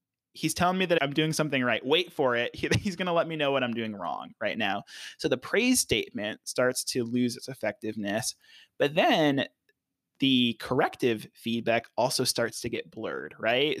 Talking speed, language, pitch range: 185 wpm, English, 125-155 Hz